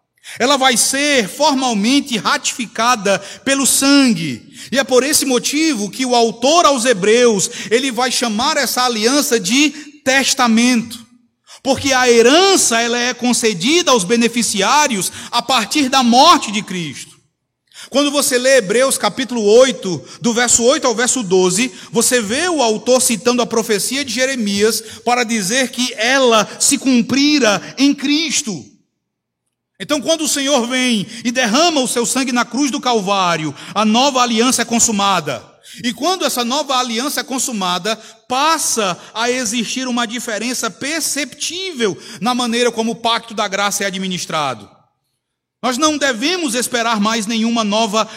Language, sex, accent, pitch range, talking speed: Portuguese, male, Brazilian, 215-265 Hz, 145 wpm